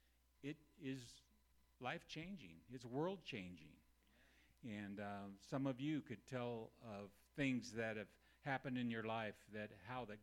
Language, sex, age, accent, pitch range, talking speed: English, male, 50-69, American, 100-125 Hz, 135 wpm